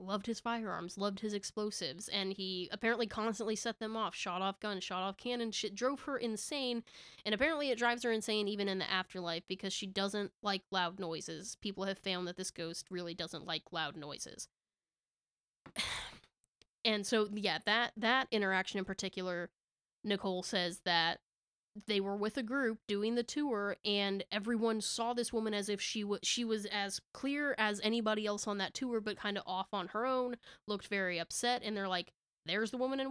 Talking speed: 190 wpm